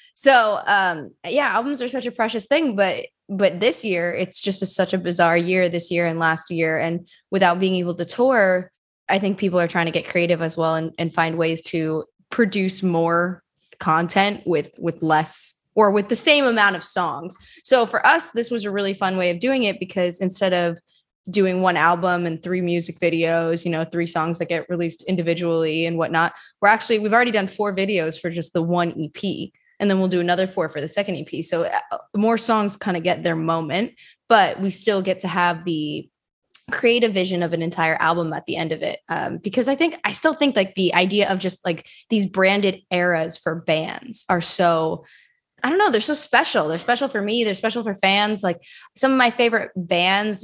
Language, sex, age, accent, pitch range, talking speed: English, female, 20-39, American, 170-210 Hz, 215 wpm